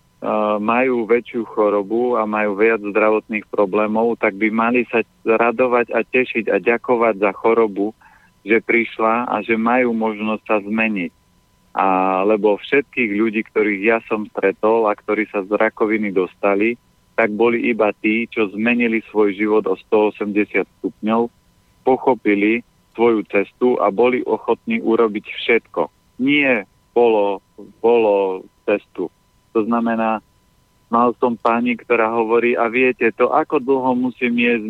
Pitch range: 105-120 Hz